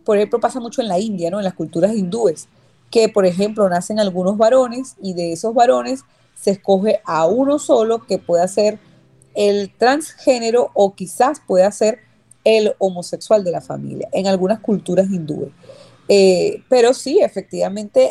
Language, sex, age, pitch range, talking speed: Spanish, female, 30-49, 185-245 Hz, 160 wpm